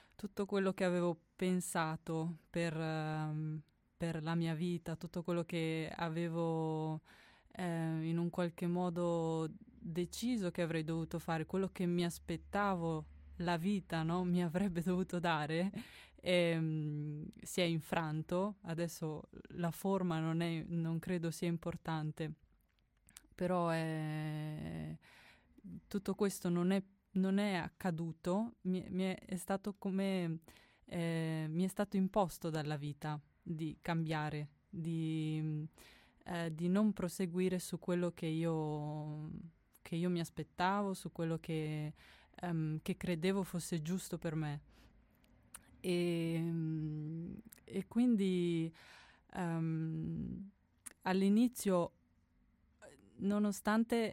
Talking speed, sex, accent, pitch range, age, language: 110 wpm, female, native, 160-185 Hz, 20-39, Italian